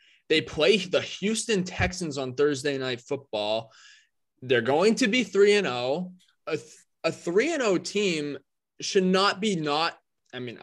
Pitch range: 135-190 Hz